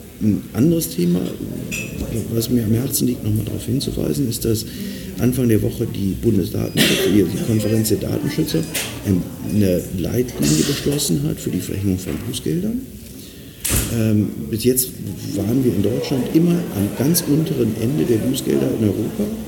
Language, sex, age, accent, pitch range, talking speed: German, male, 50-69, German, 100-120 Hz, 140 wpm